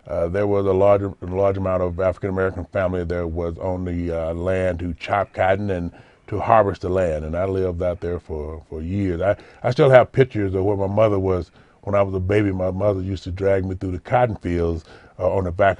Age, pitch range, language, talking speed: 30-49, 95-105 Hz, English, 235 wpm